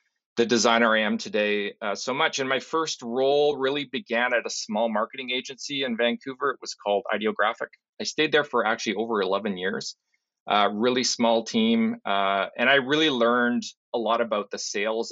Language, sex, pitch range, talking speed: English, male, 115-155 Hz, 185 wpm